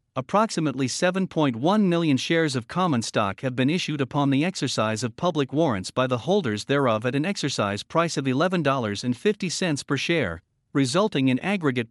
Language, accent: English, American